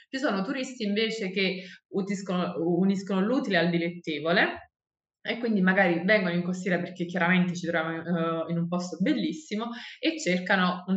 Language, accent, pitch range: Italian, native, 170-215 Hz